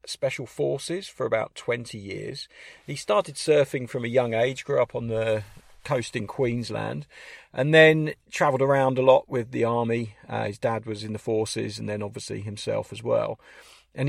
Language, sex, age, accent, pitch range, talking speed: English, male, 40-59, British, 110-135 Hz, 185 wpm